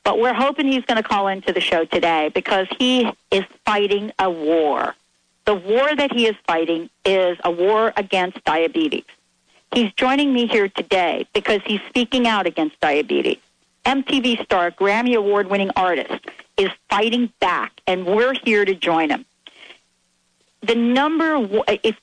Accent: American